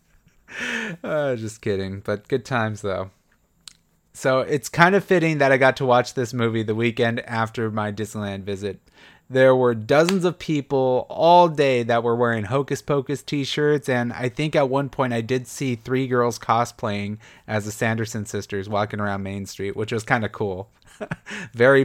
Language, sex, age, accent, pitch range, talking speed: English, male, 30-49, American, 110-140 Hz, 175 wpm